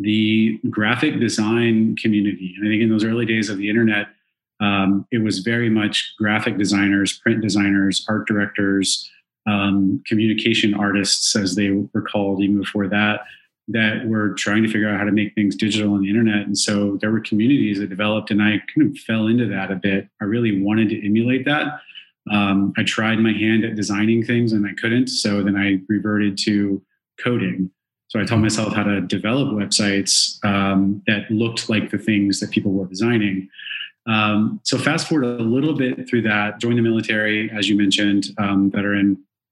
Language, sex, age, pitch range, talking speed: English, male, 30-49, 100-110 Hz, 185 wpm